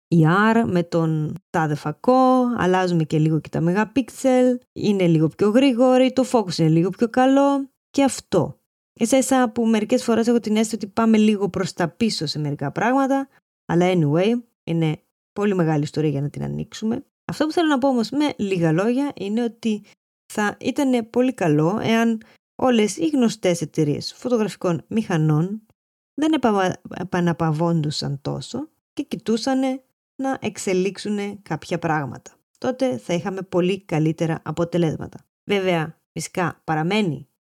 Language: Greek